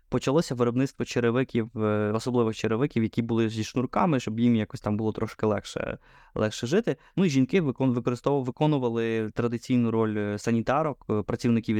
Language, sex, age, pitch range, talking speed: Ukrainian, male, 20-39, 110-130 Hz, 130 wpm